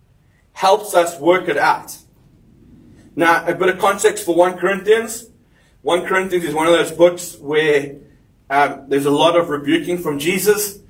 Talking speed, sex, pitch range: 160 wpm, male, 150-180 Hz